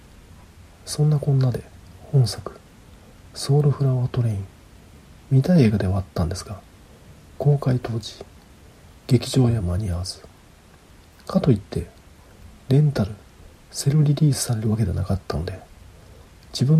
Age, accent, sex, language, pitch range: 40-59, native, male, Japanese, 90-120 Hz